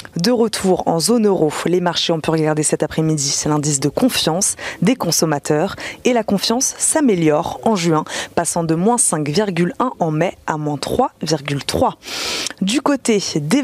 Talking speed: 160 wpm